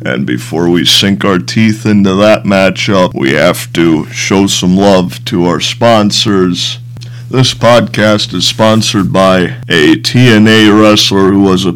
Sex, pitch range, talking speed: male, 90-120 Hz, 150 wpm